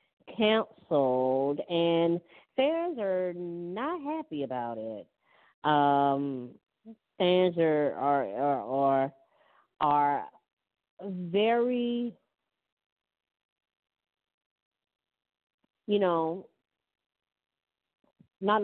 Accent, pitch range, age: American, 145-195 Hz, 40-59